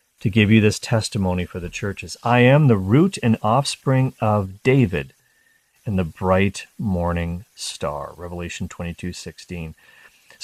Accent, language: American, English